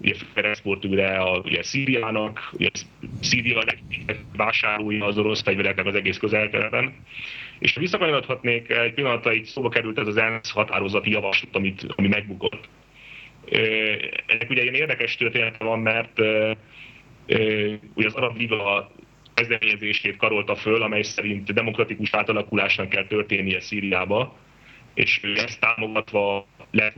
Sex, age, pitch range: male, 30-49, 100-120 Hz